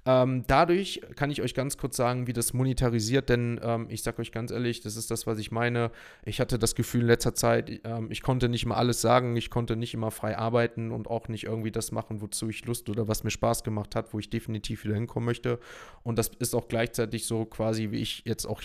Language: German